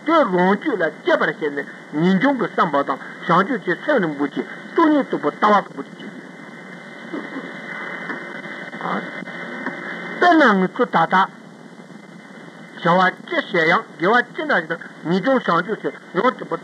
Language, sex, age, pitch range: Italian, male, 60-79, 185-260 Hz